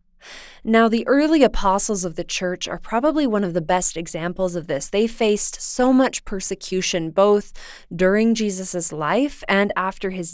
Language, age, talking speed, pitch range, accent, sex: English, 20-39, 160 wpm, 185-245 Hz, American, female